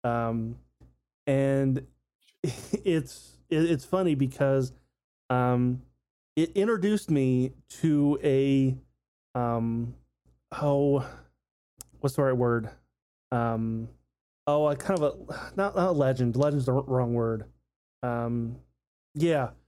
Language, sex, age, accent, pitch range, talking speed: English, male, 30-49, American, 115-155 Hz, 105 wpm